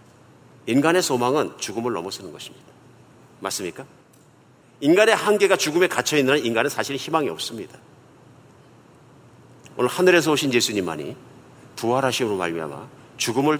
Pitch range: 120-145 Hz